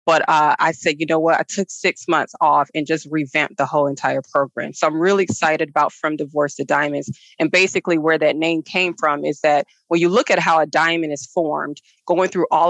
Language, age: English, 30-49